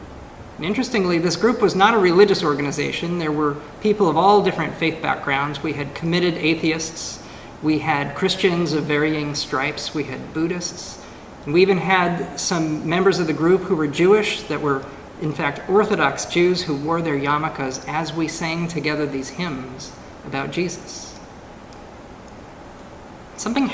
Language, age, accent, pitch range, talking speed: English, 40-59, American, 145-185 Hz, 150 wpm